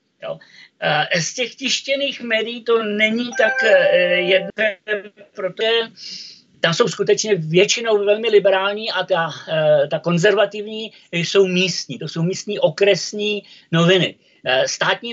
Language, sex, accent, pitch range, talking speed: Czech, male, native, 165-205 Hz, 110 wpm